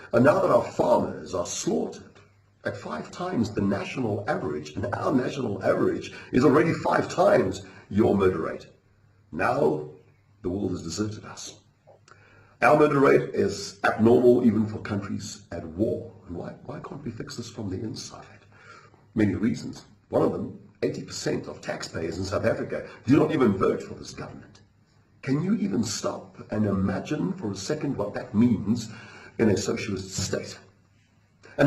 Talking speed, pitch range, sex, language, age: 160 wpm, 100-120 Hz, male, German, 50-69